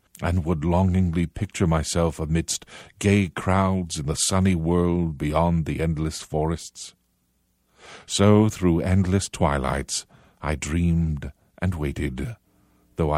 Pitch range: 75-100 Hz